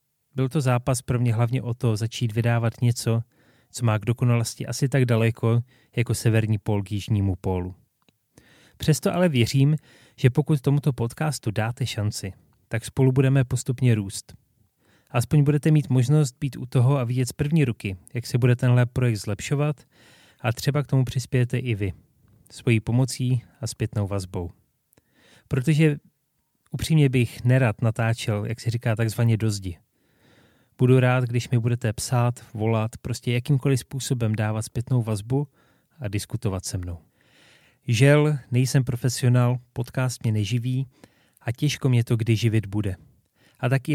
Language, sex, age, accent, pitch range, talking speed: Czech, male, 30-49, native, 115-135 Hz, 150 wpm